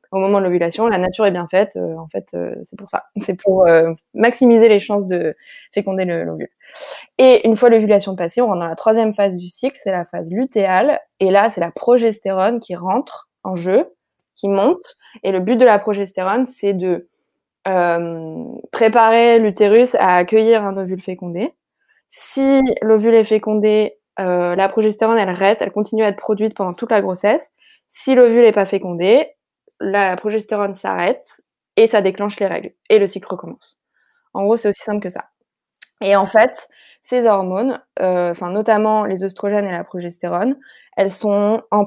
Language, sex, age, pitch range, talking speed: French, female, 20-39, 190-230 Hz, 175 wpm